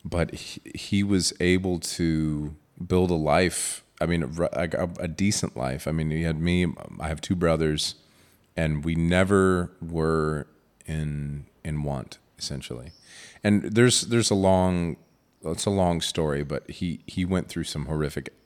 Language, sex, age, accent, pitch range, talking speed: Dutch, male, 30-49, American, 70-85 Hz, 160 wpm